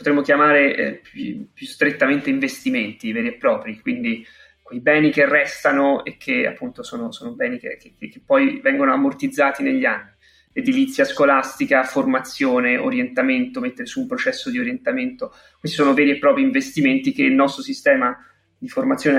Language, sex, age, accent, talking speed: Italian, male, 20-39, native, 160 wpm